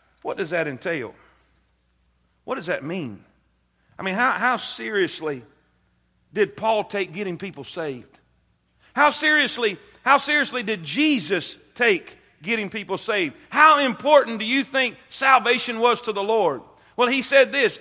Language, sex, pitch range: English, male, 220-295 Hz